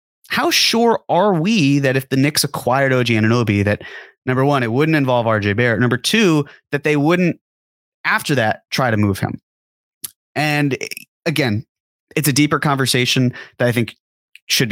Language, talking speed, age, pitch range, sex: English, 165 wpm, 30-49, 115-150 Hz, male